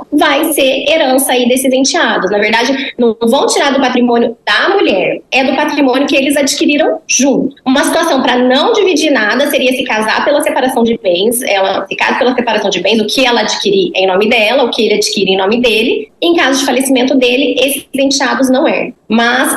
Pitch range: 235-285 Hz